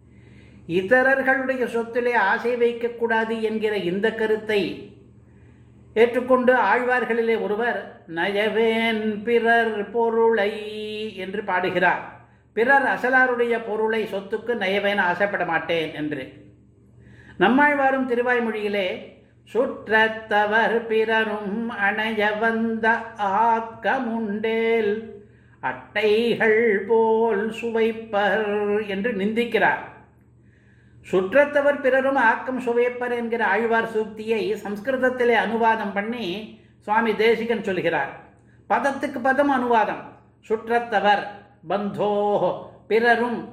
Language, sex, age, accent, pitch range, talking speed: Tamil, male, 60-79, native, 205-235 Hz, 70 wpm